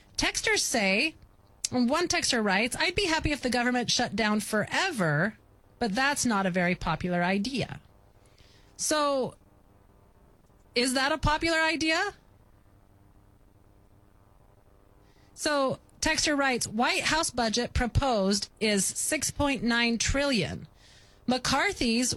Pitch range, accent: 155-255 Hz, American